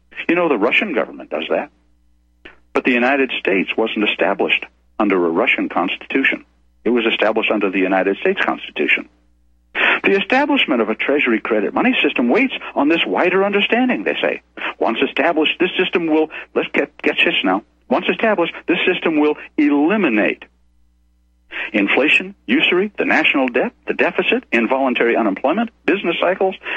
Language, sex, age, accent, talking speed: English, male, 60-79, American, 150 wpm